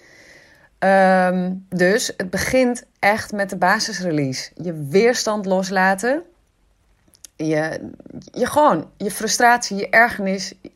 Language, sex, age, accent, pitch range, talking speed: Dutch, female, 30-49, Dutch, 165-215 Hz, 85 wpm